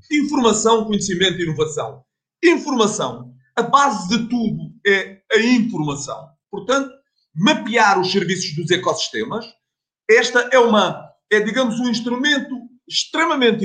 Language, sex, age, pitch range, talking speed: Portuguese, male, 40-59, 185-250 Hz, 115 wpm